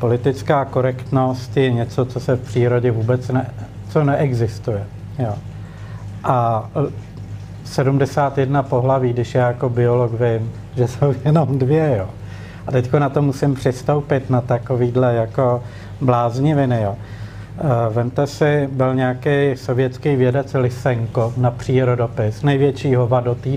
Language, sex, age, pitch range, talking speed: Czech, male, 50-69, 105-140 Hz, 120 wpm